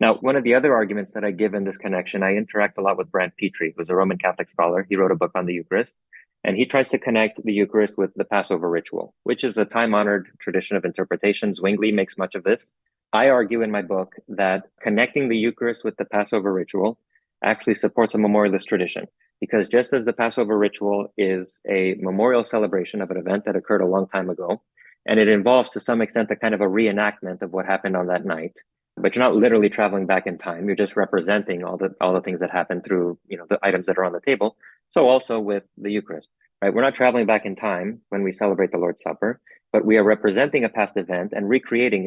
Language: English